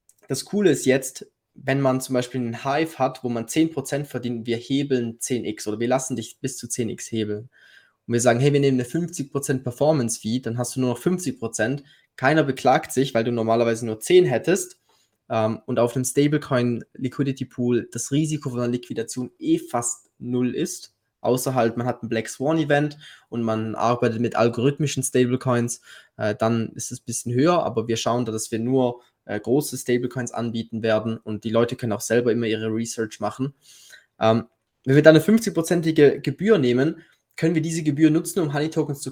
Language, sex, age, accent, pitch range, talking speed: German, male, 20-39, German, 115-150 Hz, 185 wpm